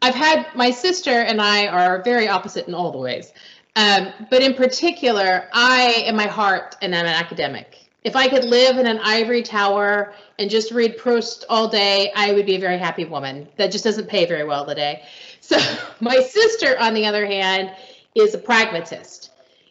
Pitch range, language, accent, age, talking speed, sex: 190-240 Hz, English, American, 30-49, 190 wpm, female